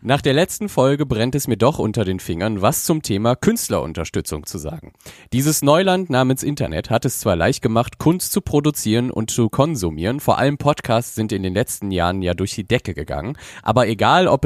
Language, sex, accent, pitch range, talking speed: German, male, German, 100-135 Hz, 200 wpm